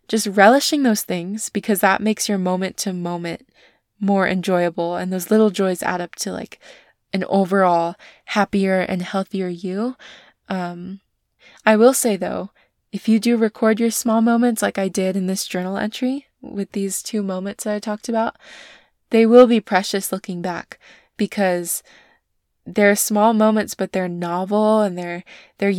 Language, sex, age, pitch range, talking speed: English, female, 20-39, 185-220 Hz, 165 wpm